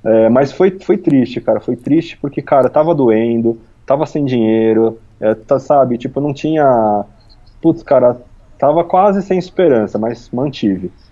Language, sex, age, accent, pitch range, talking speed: Portuguese, male, 20-39, Brazilian, 105-145 Hz, 155 wpm